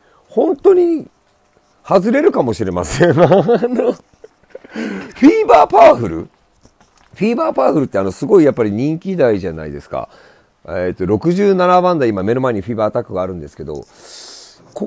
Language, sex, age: Japanese, male, 40-59